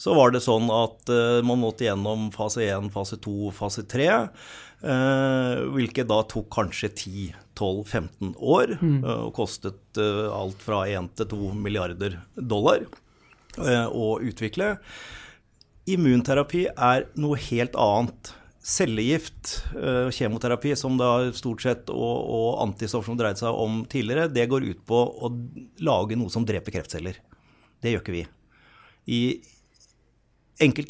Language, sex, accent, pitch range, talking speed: English, male, Swedish, 105-130 Hz, 140 wpm